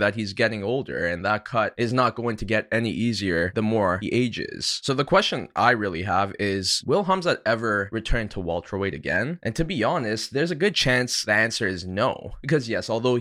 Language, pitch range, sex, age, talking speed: English, 100-120 Hz, male, 20-39, 215 wpm